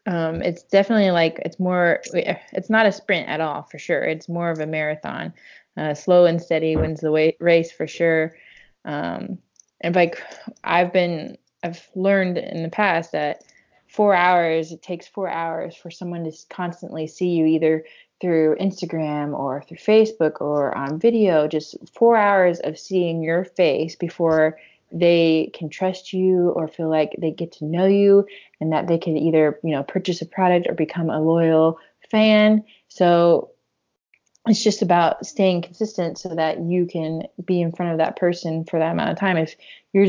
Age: 20-39